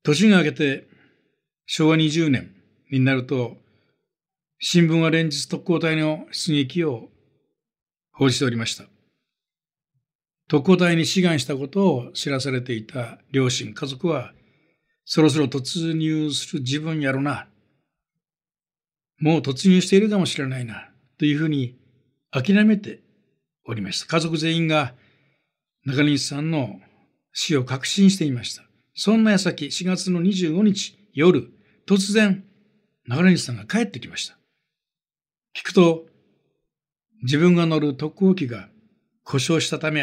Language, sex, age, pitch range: Japanese, male, 60-79, 135-170 Hz